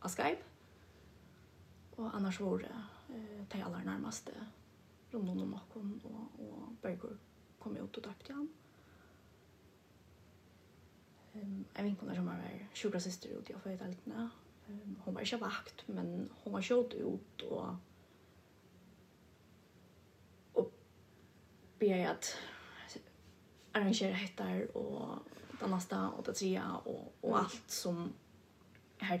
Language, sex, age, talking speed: Danish, female, 20-39, 115 wpm